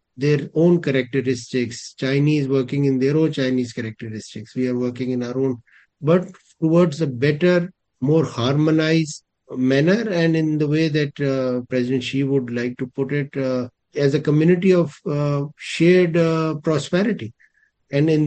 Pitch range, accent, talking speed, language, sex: 125-155 Hz, Indian, 155 wpm, English, male